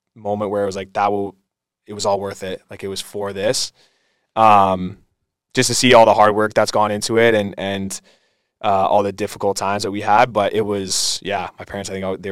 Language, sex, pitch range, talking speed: English, male, 95-110 Hz, 235 wpm